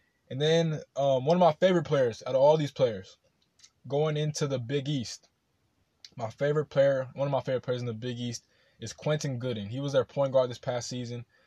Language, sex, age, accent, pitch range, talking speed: English, male, 20-39, American, 120-135 Hz, 215 wpm